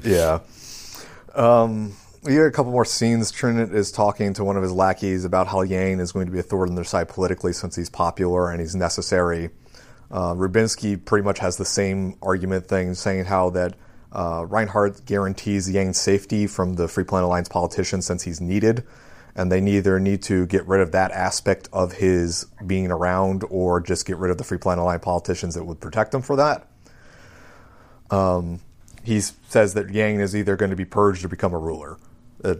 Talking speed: 195 wpm